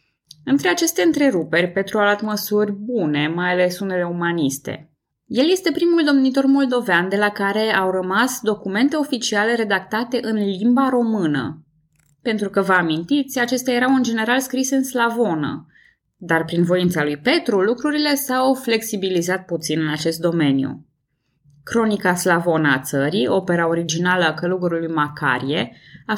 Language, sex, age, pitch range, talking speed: Romanian, female, 20-39, 165-230 Hz, 140 wpm